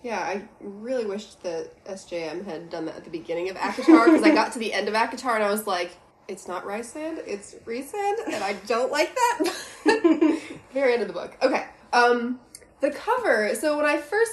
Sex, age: female, 20-39